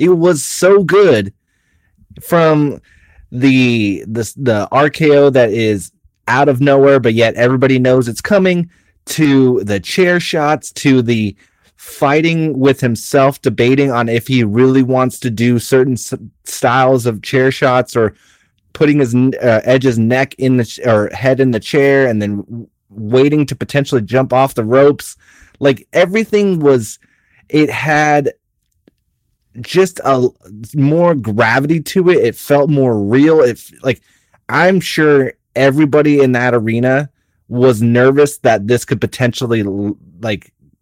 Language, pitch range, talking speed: English, 110-140 Hz, 135 wpm